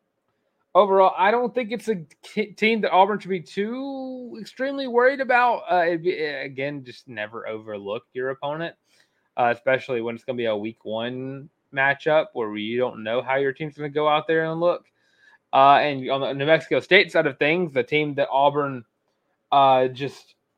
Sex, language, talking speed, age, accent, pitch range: male, English, 190 wpm, 20-39, American, 130-180 Hz